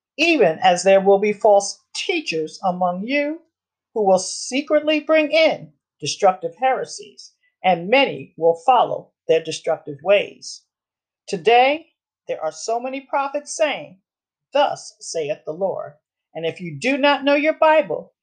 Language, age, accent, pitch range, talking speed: English, 50-69, American, 185-300 Hz, 140 wpm